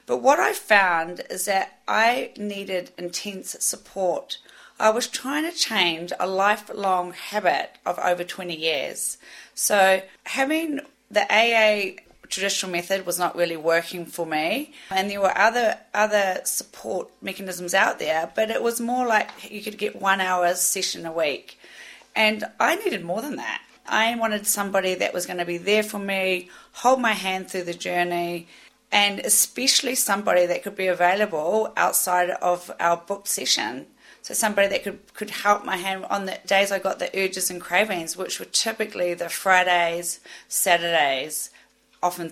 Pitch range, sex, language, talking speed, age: 175-210 Hz, female, English, 165 wpm, 30-49